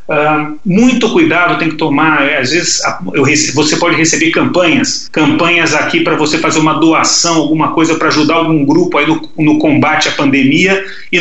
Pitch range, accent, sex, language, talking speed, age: 155-180 Hz, Brazilian, male, Portuguese, 180 wpm, 40-59